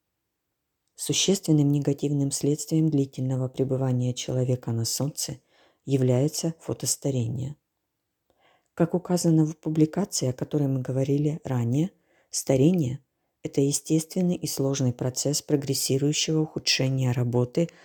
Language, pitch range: Ukrainian, 125-155 Hz